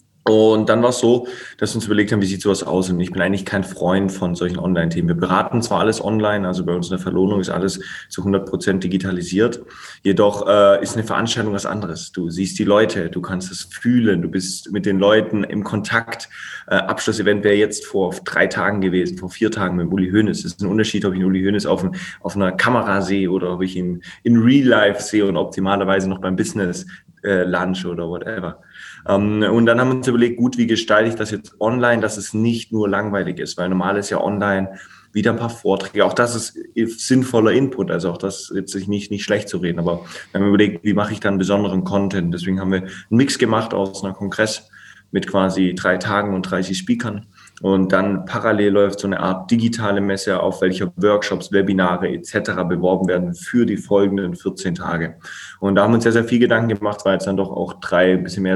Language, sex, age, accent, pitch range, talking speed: German, male, 20-39, German, 95-105 Hz, 220 wpm